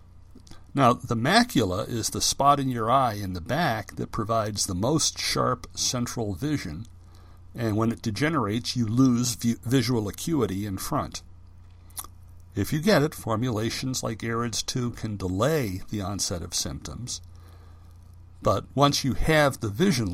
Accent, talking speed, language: American, 145 wpm, English